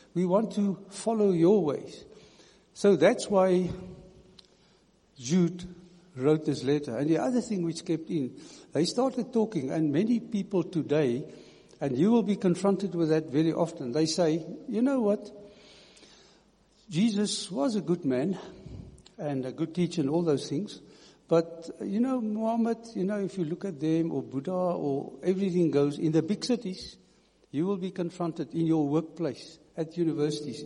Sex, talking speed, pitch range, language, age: male, 160 wpm, 155-200 Hz, English, 60-79